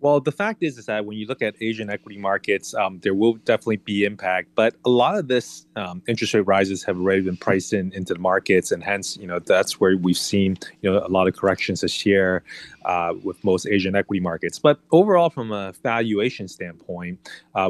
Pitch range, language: 100-115 Hz, English